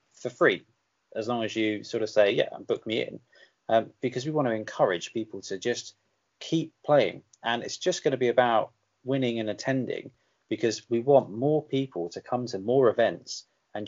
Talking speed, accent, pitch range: 200 wpm, British, 110-150 Hz